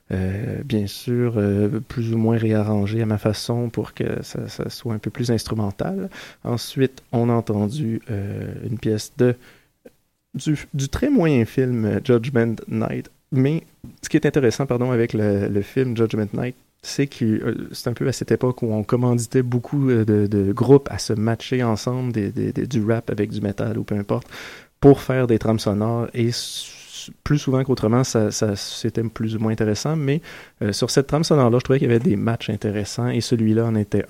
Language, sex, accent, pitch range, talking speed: French, male, Canadian, 110-130 Hz, 200 wpm